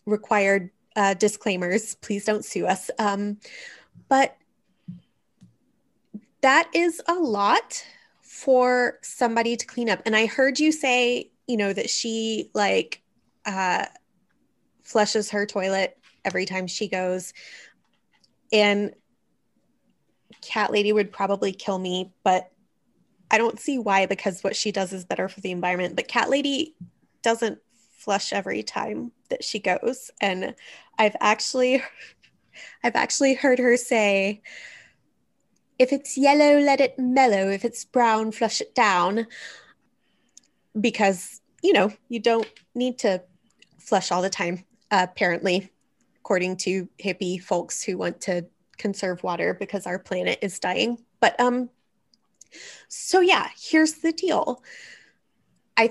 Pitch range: 195-255 Hz